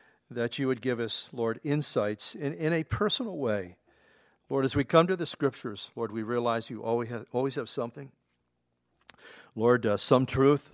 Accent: American